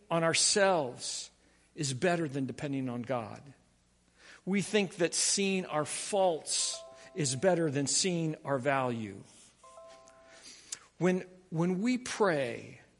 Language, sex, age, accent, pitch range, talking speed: English, male, 50-69, American, 125-175 Hz, 110 wpm